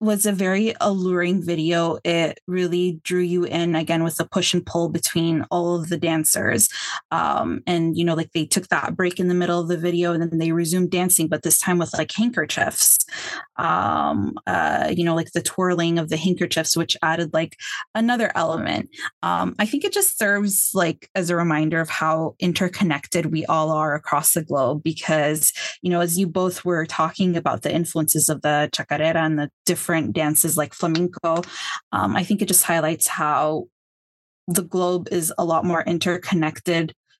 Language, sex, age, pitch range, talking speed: English, female, 20-39, 165-185 Hz, 185 wpm